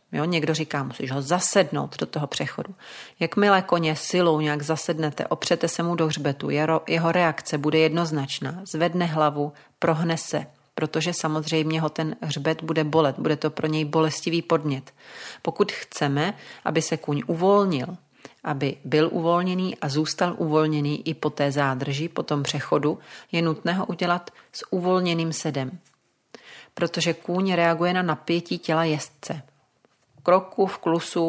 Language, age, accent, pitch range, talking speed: Czech, 40-59, native, 150-170 Hz, 145 wpm